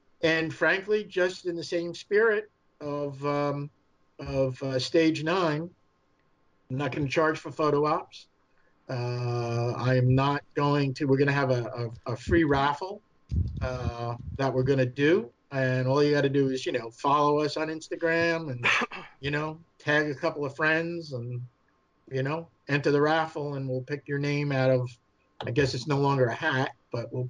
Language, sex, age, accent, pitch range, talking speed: English, male, 50-69, American, 125-155 Hz, 185 wpm